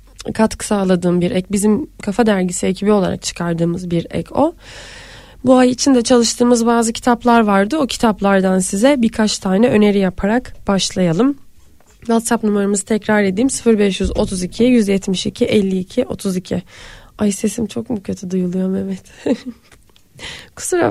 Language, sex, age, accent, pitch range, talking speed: Turkish, female, 20-39, native, 200-255 Hz, 120 wpm